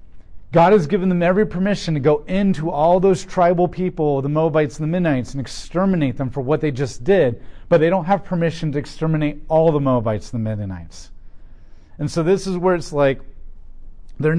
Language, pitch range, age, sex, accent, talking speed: English, 115-165 Hz, 40-59, male, American, 195 wpm